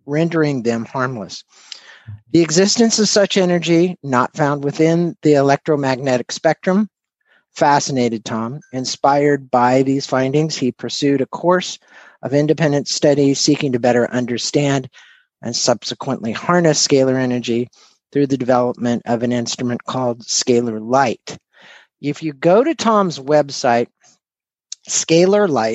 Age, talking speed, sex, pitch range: 50-69, 120 wpm, male, 125-170 Hz